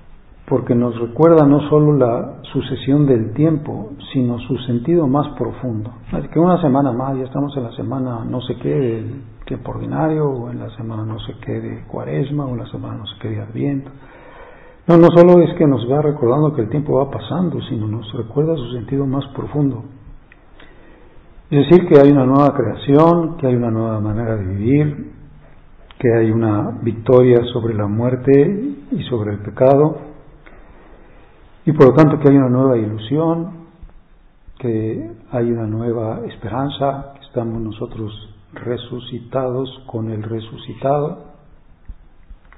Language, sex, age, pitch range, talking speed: Spanish, male, 50-69, 115-140 Hz, 160 wpm